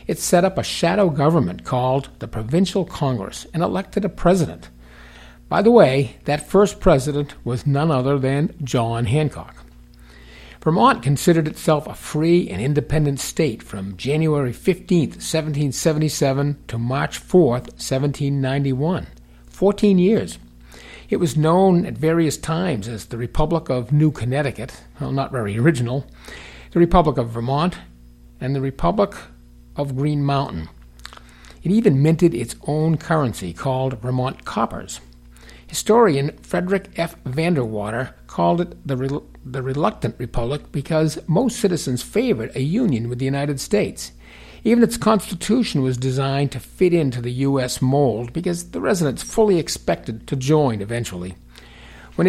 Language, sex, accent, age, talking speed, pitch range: English, male, American, 50-69, 135 wpm, 115-165 Hz